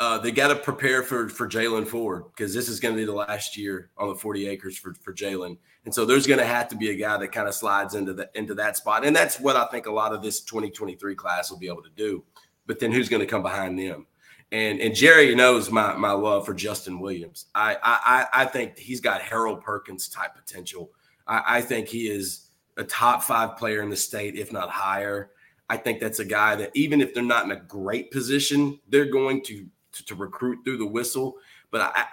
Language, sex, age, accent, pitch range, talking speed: English, male, 30-49, American, 105-145 Hz, 240 wpm